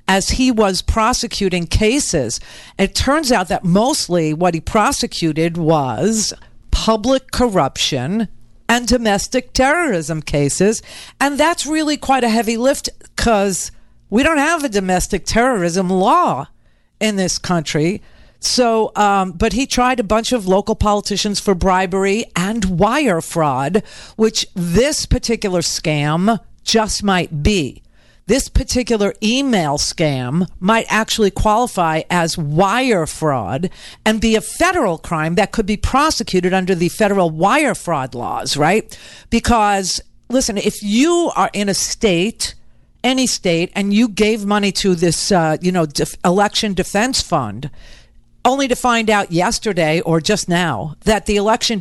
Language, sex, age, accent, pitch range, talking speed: English, female, 50-69, American, 175-230 Hz, 140 wpm